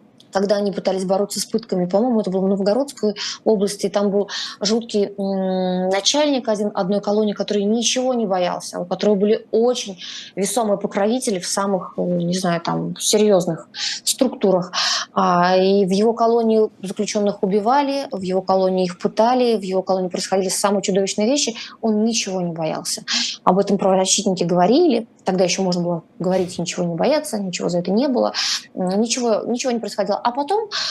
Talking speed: 155 wpm